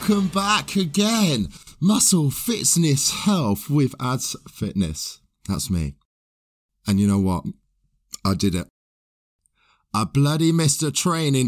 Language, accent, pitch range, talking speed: English, British, 90-125 Hz, 120 wpm